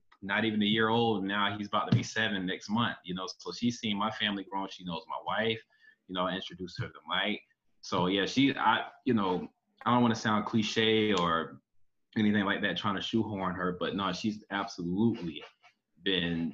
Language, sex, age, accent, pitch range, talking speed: English, male, 20-39, American, 95-120 Hz, 205 wpm